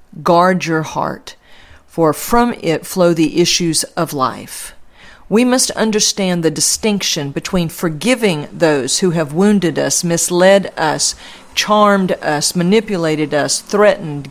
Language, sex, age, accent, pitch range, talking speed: English, female, 50-69, American, 160-200 Hz, 125 wpm